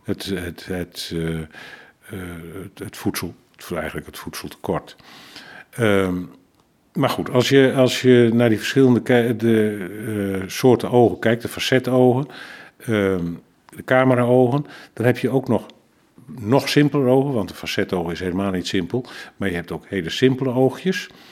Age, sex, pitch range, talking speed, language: 50-69, male, 95-125 Hz, 160 wpm, Dutch